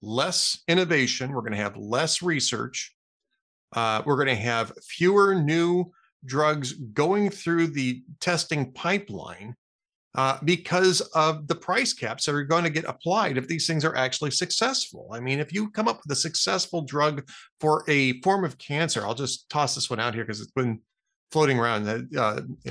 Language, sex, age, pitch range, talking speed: English, male, 40-59, 130-175 Hz, 180 wpm